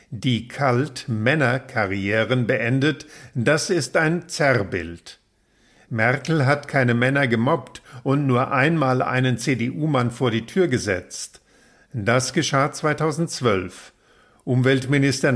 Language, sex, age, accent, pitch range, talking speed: German, male, 50-69, German, 120-150 Hz, 100 wpm